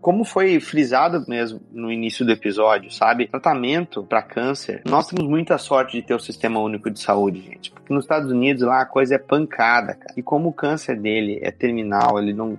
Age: 30-49